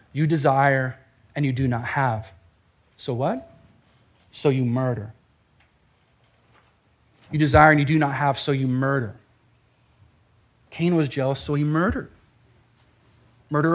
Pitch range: 120-155 Hz